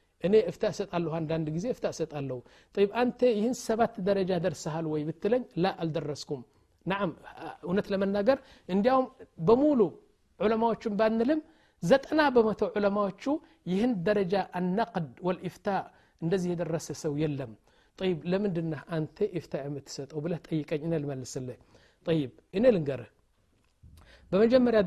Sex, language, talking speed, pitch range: male, Amharic, 115 wpm, 160-210 Hz